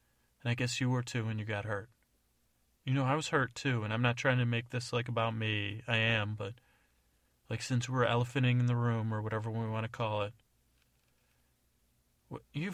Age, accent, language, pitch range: 30-49, American, English, 95-120 Hz